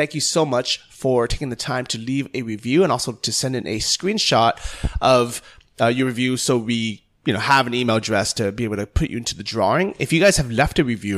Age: 30-49